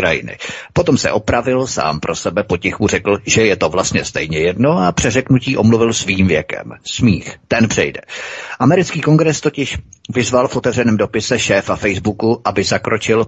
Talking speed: 150 wpm